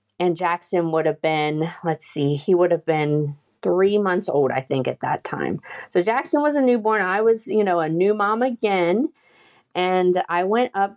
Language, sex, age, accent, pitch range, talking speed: English, female, 40-59, American, 155-200 Hz, 195 wpm